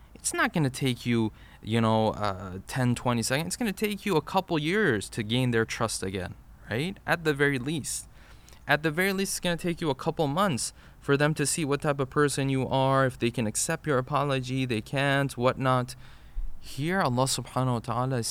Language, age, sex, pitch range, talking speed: English, 20-39, male, 115-160 Hz, 220 wpm